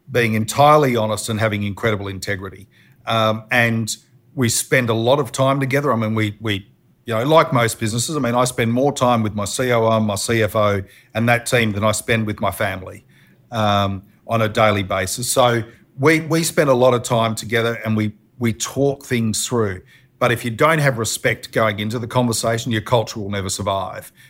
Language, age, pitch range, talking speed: English, 40-59, 105-125 Hz, 200 wpm